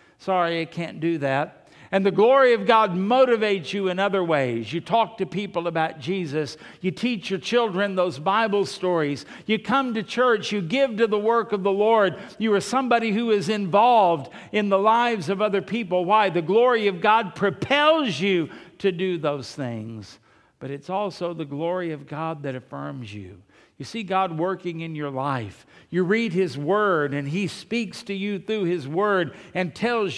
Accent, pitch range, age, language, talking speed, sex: American, 155-210 Hz, 60-79, English, 185 wpm, male